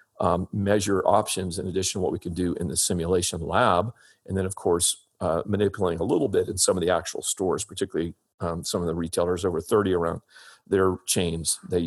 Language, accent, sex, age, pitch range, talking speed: English, American, male, 40-59, 90-110 Hz, 205 wpm